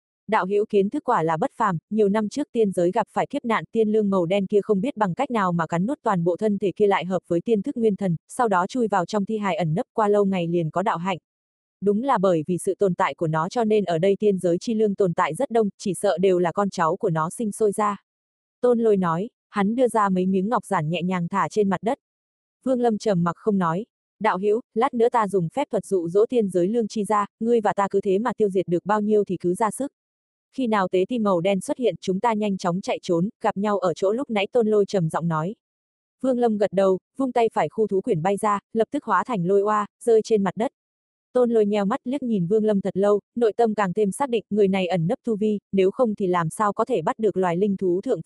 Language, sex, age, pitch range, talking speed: Vietnamese, female, 20-39, 185-225 Hz, 280 wpm